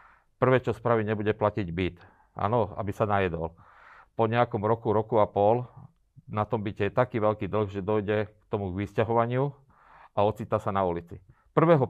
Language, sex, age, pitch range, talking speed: Slovak, male, 40-59, 105-120 Hz, 170 wpm